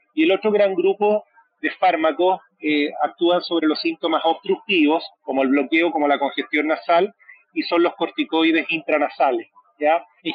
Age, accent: 40-59, Argentinian